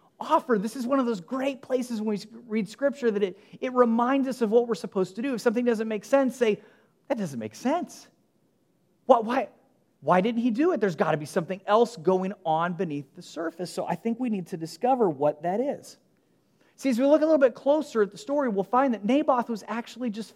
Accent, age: American, 30-49